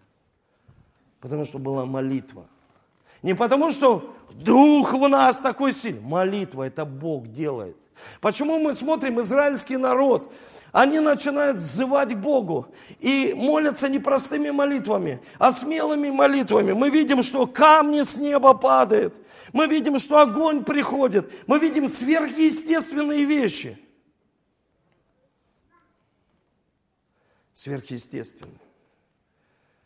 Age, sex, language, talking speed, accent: 50-69, male, Russian, 100 wpm, native